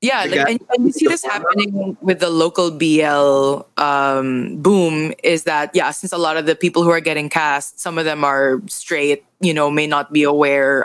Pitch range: 150-190 Hz